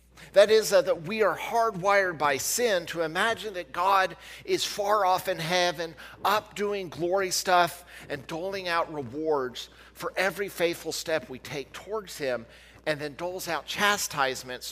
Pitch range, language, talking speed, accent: 120-200 Hz, English, 160 wpm, American